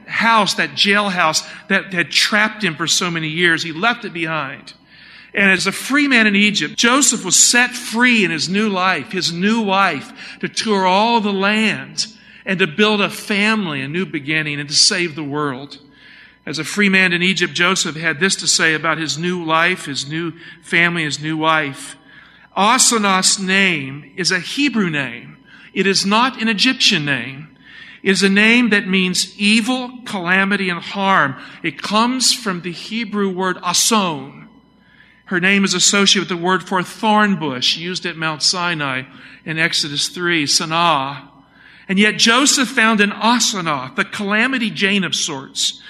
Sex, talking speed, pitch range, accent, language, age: male, 170 wpm, 160-215 Hz, American, English, 50-69